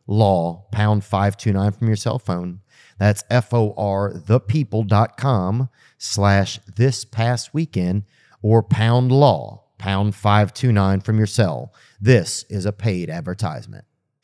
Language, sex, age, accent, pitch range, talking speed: English, male, 40-59, American, 105-125 Hz, 135 wpm